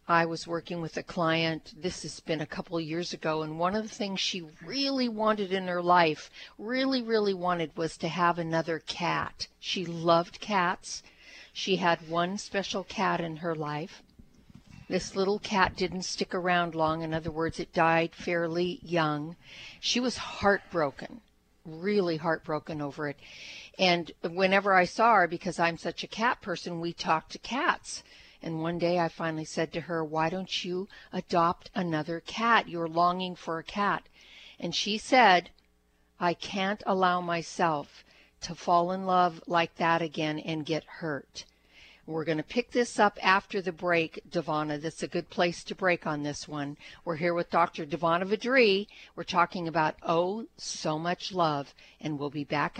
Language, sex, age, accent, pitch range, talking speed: English, female, 50-69, American, 160-185 Hz, 170 wpm